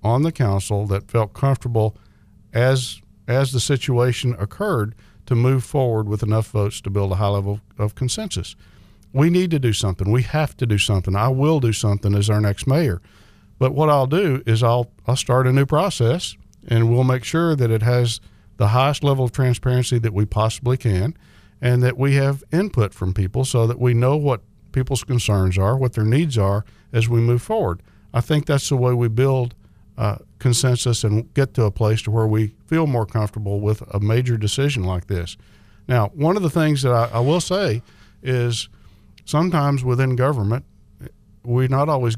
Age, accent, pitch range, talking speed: 50-69, American, 105-130 Hz, 190 wpm